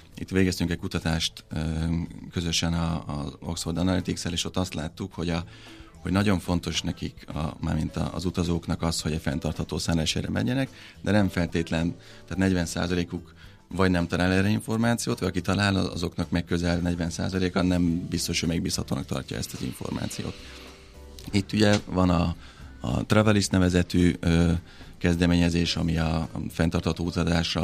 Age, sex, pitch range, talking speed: 30-49, male, 80-90 Hz, 140 wpm